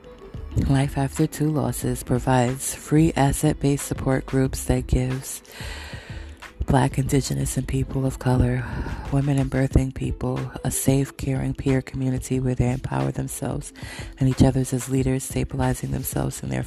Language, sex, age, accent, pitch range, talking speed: English, female, 20-39, American, 125-135 Hz, 140 wpm